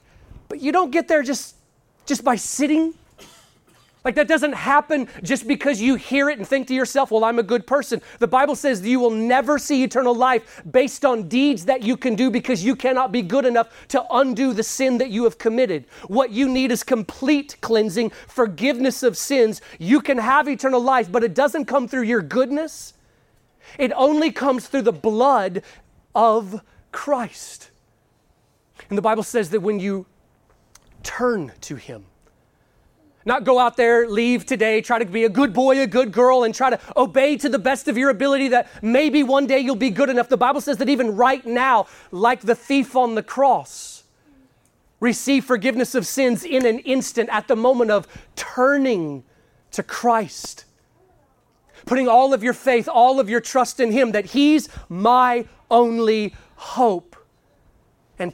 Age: 30-49